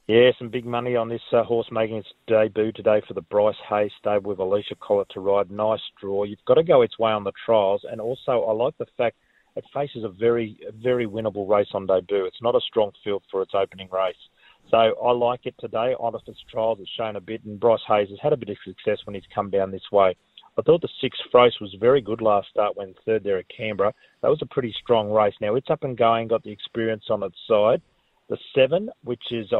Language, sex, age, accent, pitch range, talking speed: English, male, 30-49, Australian, 105-125 Hz, 240 wpm